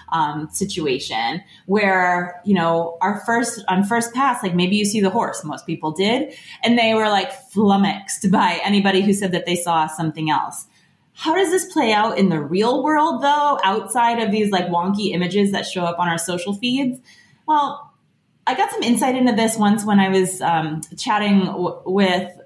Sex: female